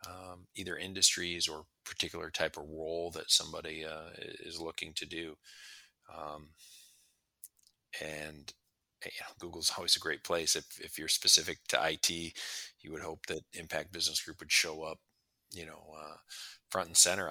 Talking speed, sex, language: 160 wpm, male, English